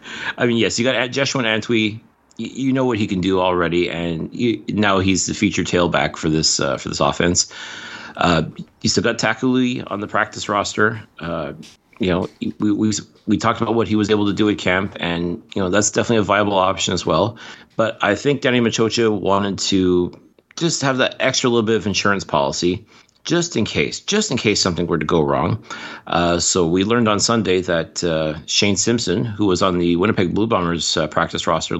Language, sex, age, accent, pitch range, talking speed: English, male, 30-49, American, 90-115 Hz, 210 wpm